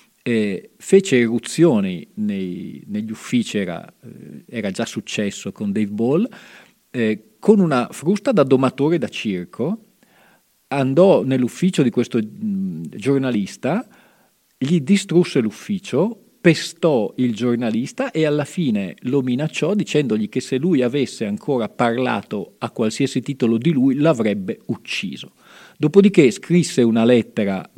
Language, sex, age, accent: Italian, male, 40-59, native